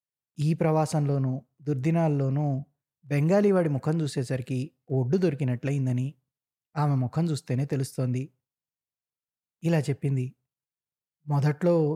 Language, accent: Telugu, native